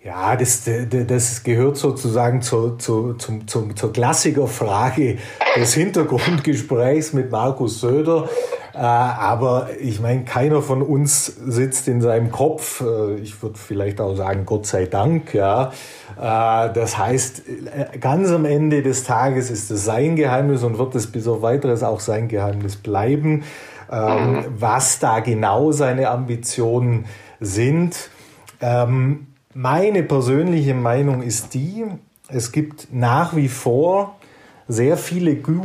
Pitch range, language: 120-150 Hz, German